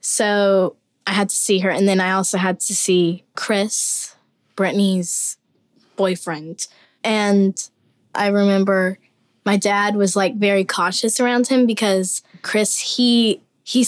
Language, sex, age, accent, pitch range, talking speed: English, female, 10-29, American, 185-210 Hz, 135 wpm